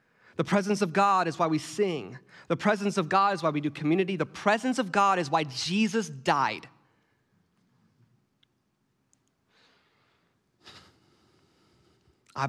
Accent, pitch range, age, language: American, 125-160 Hz, 20-39, English